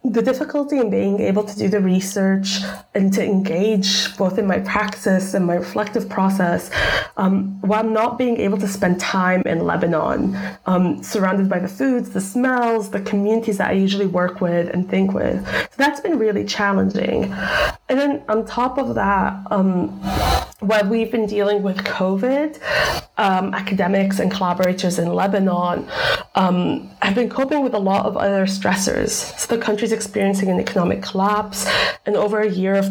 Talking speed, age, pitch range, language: 170 wpm, 20-39, 190-220 Hz, English